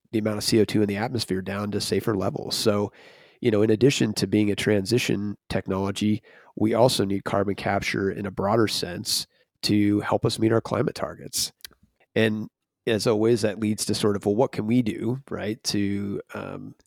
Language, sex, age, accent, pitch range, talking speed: English, male, 30-49, American, 100-115 Hz, 190 wpm